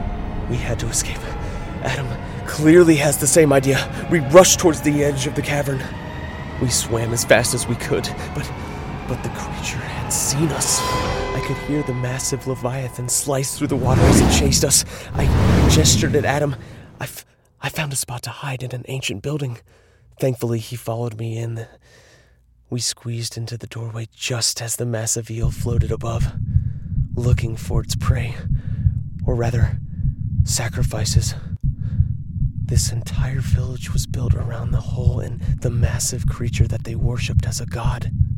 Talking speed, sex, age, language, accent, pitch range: 165 wpm, male, 30-49, English, American, 115-130 Hz